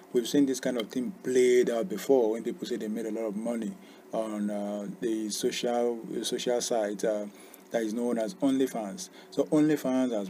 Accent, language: Nigerian, English